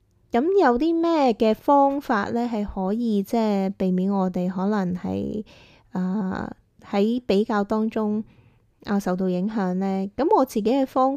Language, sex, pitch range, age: Chinese, female, 190-235 Hz, 20-39